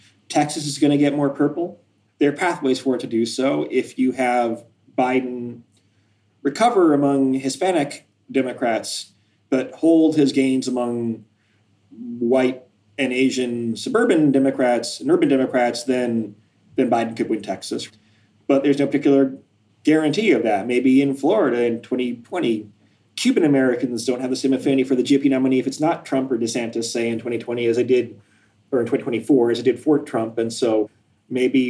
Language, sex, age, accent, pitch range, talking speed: English, male, 30-49, American, 115-135 Hz, 165 wpm